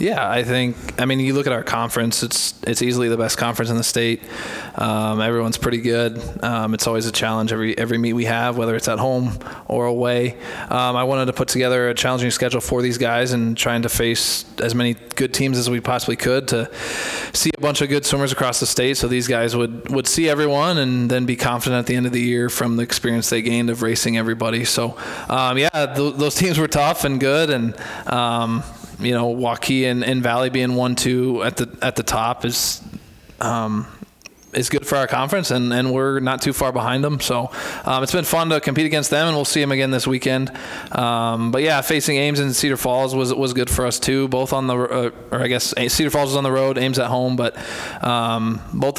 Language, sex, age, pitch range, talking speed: English, male, 20-39, 120-135 Hz, 230 wpm